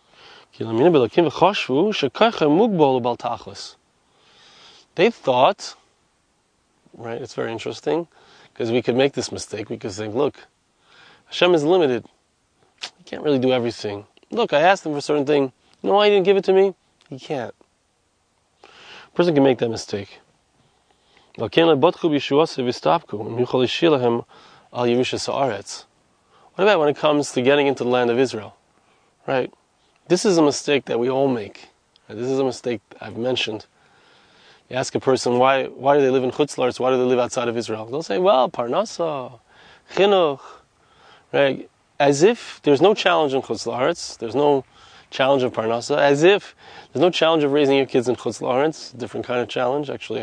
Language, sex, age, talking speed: English, male, 20-39, 155 wpm